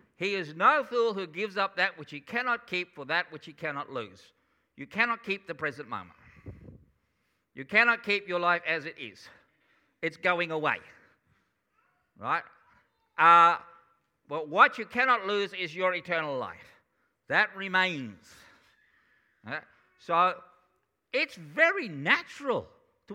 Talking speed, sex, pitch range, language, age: 135 wpm, male, 165-230 Hz, English, 50-69